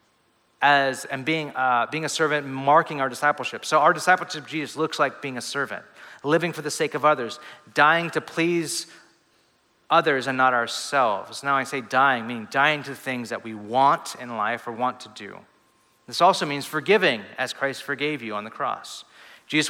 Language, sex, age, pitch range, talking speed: English, male, 40-59, 125-150 Hz, 190 wpm